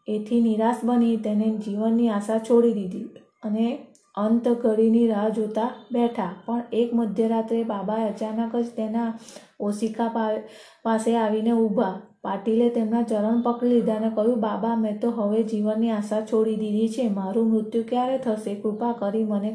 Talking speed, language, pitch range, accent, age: 145 wpm, Gujarati, 215-235 Hz, native, 20-39